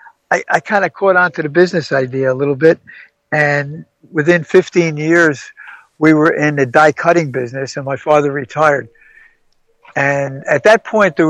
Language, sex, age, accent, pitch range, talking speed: English, male, 60-79, American, 140-165 Hz, 175 wpm